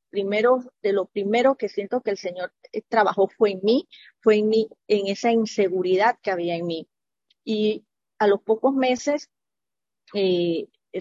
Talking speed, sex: 160 wpm, female